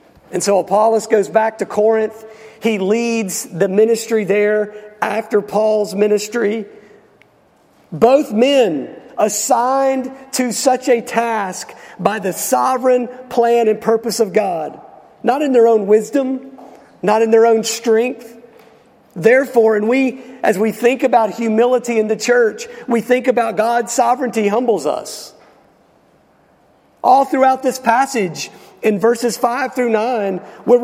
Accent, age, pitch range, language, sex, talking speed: American, 40-59, 210-250 Hz, English, male, 130 wpm